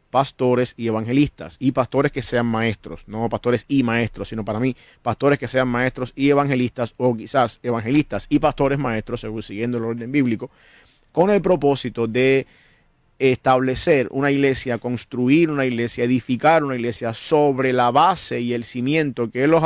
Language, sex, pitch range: English, male, 115-140 Hz